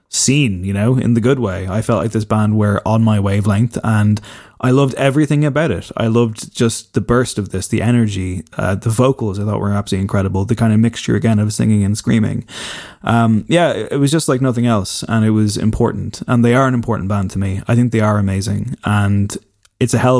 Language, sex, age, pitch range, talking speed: English, male, 20-39, 105-120 Hz, 230 wpm